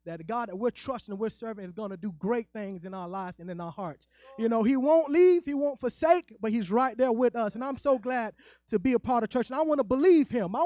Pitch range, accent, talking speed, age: 225-290 Hz, American, 295 wpm, 20-39